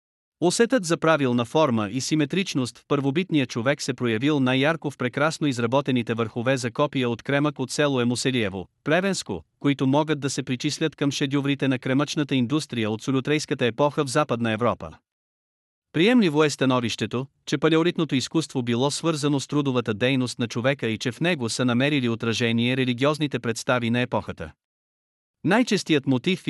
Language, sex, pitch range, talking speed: Bulgarian, male, 120-155 Hz, 150 wpm